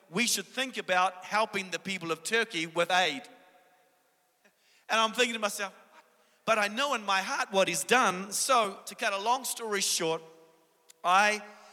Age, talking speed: 40-59, 170 wpm